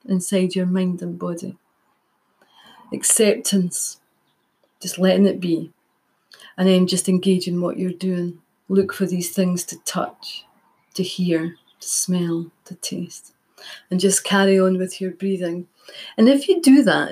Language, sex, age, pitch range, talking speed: English, female, 30-49, 180-215 Hz, 145 wpm